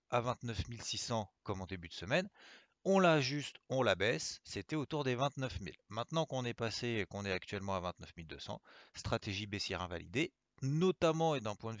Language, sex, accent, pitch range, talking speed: French, male, French, 95-125 Hz, 190 wpm